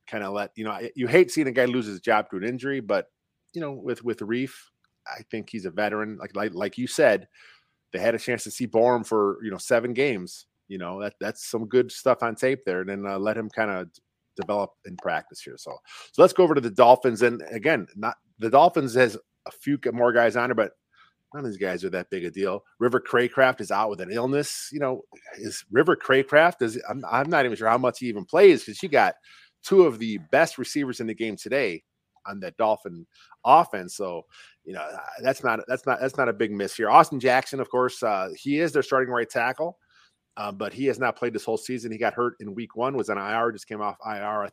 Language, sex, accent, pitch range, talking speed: English, male, American, 110-130 Hz, 245 wpm